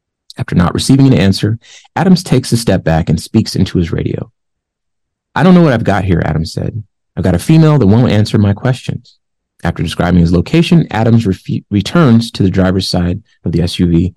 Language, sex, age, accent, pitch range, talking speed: English, male, 30-49, American, 85-125 Hz, 200 wpm